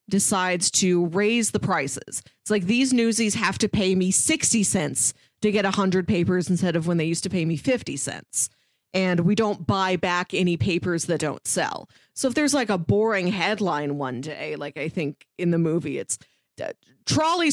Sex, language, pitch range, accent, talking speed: female, English, 175-240 Hz, American, 190 wpm